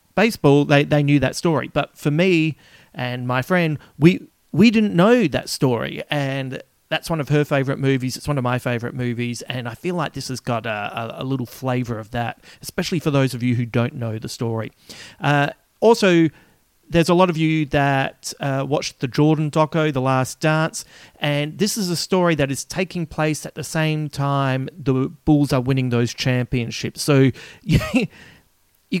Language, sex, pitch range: English, male, 125-160 Hz